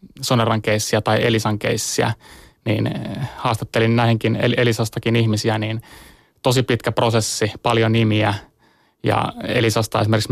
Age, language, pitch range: 20-39, Finnish, 115-125 Hz